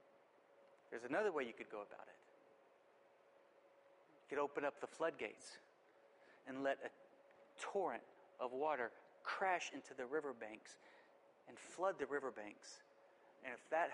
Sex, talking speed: male, 135 wpm